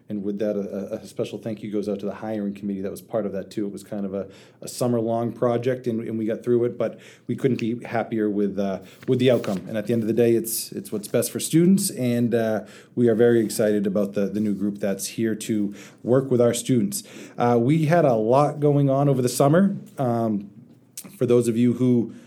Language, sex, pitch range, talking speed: English, male, 105-120 Hz, 245 wpm